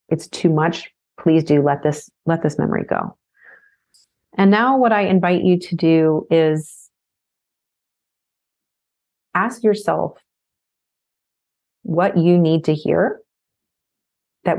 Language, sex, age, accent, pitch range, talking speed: English, female, 30-49, American, 150-190 Hz, 115 wpm